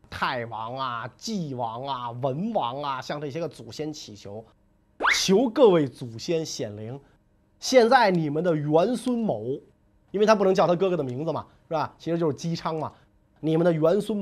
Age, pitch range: 30-49, 130-190 Hz